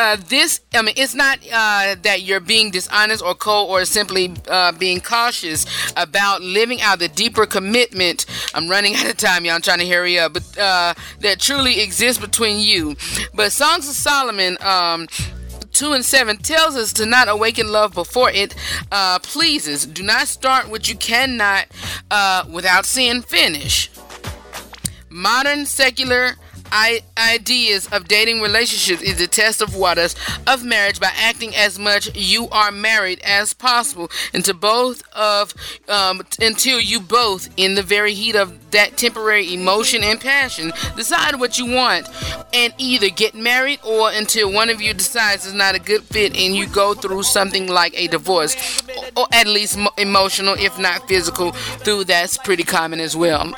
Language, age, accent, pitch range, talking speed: English, 30-49, American, 190-240 Hz, 170 wpm